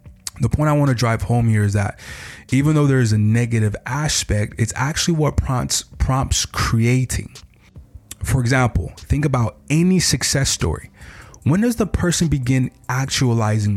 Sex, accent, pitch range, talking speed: male, American, 105-130 Hz, 155 wpm